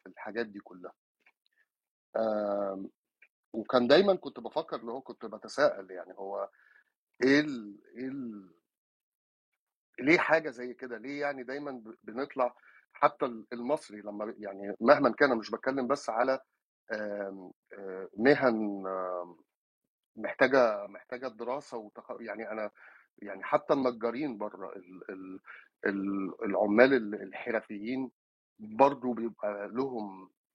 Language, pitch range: Arabic, 105-130 Hz